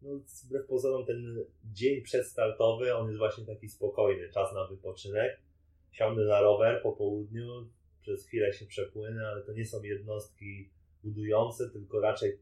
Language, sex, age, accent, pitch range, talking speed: Polish, male, 30-49, native, 95-120 Hz, 150 wpm